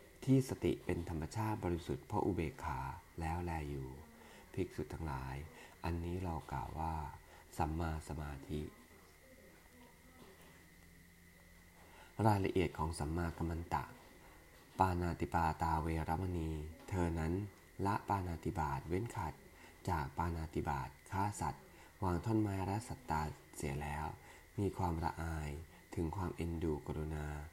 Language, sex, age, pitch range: English, male, 20-39, 80-90 Hz